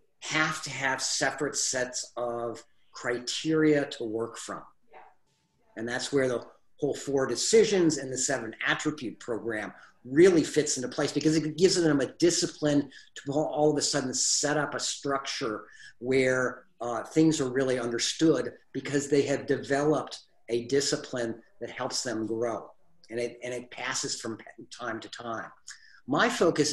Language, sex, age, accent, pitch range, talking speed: English, male, 50-69, American, 125-155 Hz, 155 wpm